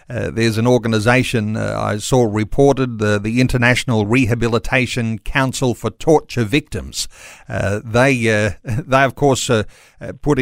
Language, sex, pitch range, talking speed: English, male, 115-145 Hz, 145 wpm